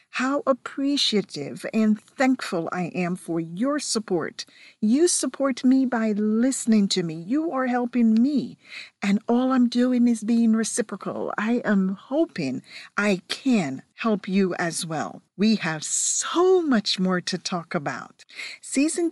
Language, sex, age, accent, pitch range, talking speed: English, female, 50-69, American, 185-255 Hz, 140 wpm